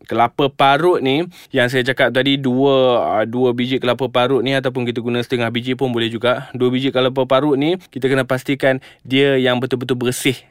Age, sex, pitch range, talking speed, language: 20-39, male, 120-150 Hz, 190 wpm, Malay